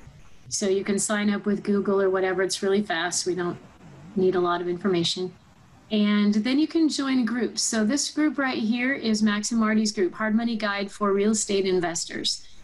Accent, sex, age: American, female, 30-49